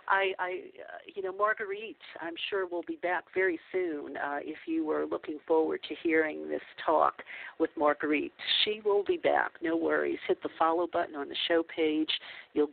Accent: American